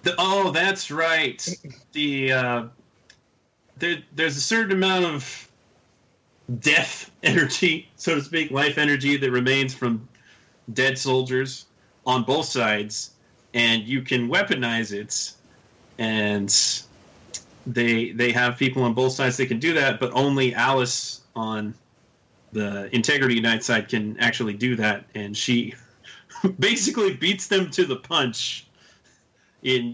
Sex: male